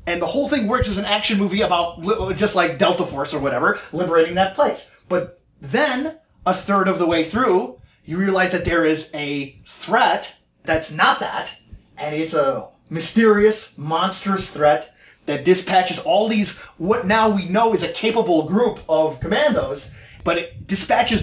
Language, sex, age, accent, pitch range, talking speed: English, male, 30-49, American, 165-220 Hz, 170 wpm